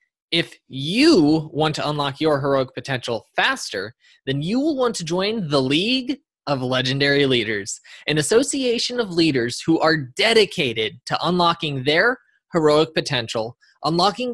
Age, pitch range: 20-39, 145-225 Hz